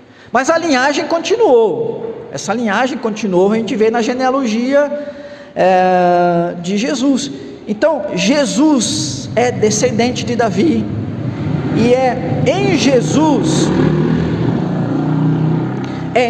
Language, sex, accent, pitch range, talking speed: Portuguese, male, Brazilian, 200-280 Hz, 90 wpm